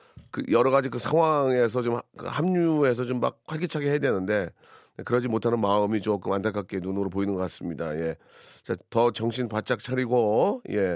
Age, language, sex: 40-59, Korean, male